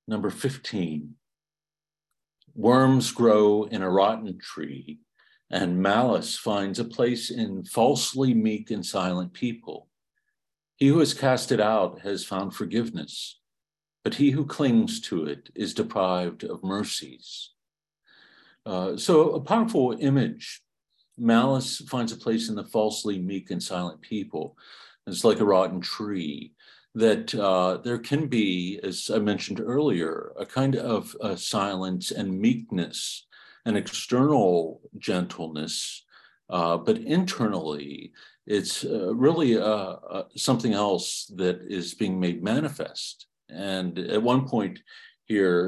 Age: 50-69